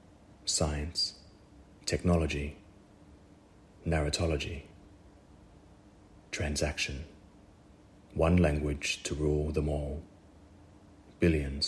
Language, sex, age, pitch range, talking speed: English, male, 30-49, 75-100 Hz, 55 wpm